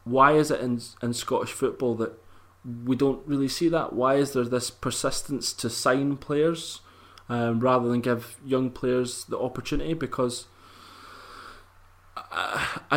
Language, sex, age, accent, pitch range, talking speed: English, male, 20-39, British, 115-135 Hz, 145 wpm